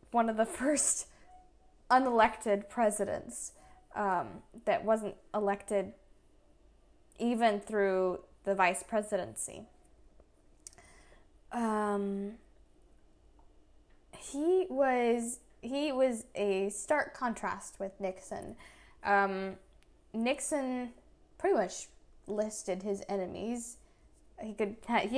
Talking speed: 85 wpm